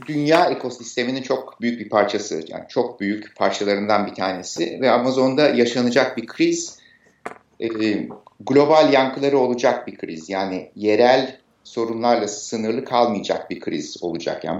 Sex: male